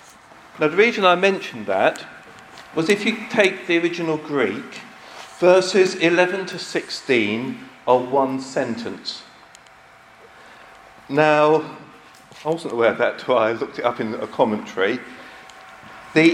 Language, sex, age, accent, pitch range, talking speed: English, male, 50-69, British, 130-180 Hz, 130 wpm